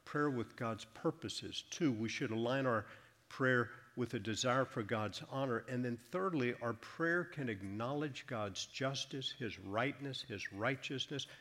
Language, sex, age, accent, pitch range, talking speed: English, male, 50-69, American, 110-135 Hz, 155 wpm